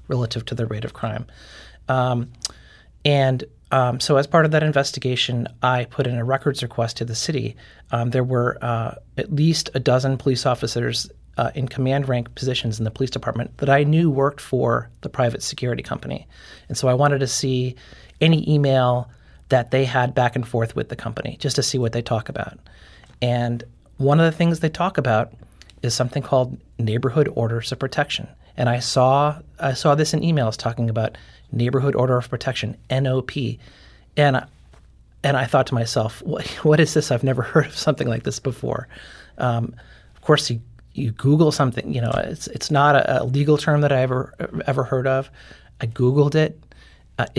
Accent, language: American, English